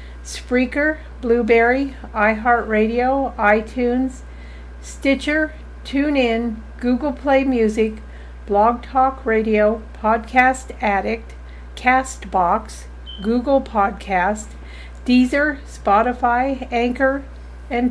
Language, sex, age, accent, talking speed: English, female, 50-69, American, 70 wpm